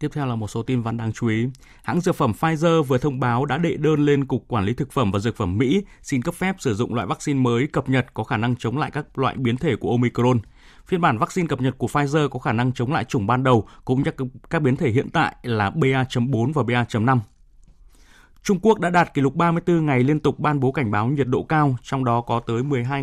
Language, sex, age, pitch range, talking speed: Vietnamese, male, 20-39, 115-145 Hz, 260 wpm